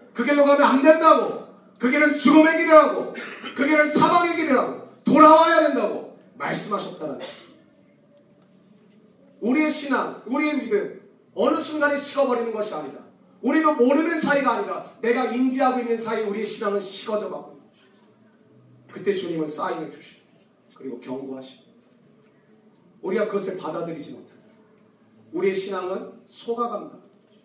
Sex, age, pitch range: male, 40-59, 195-245 Hz